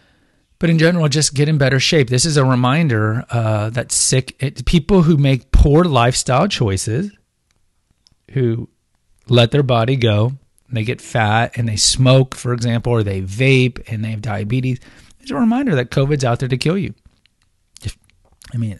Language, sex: English, male